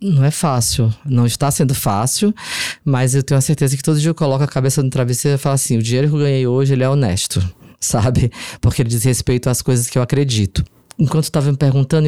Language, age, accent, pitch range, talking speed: Portuguese, 20-39, Brazilian, 135-175 Hz, 235 wpm